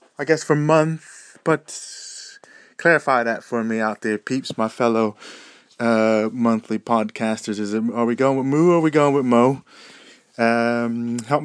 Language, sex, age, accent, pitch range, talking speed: English, male, 20-39, British, 100-130 Hz, 170 wpm